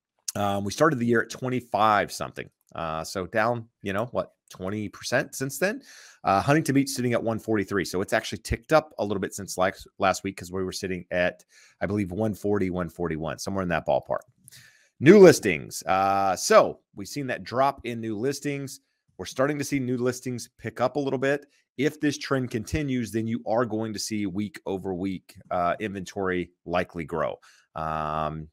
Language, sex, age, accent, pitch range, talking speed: English, male, 30-49, American, 100-130 Hz, 185 wpm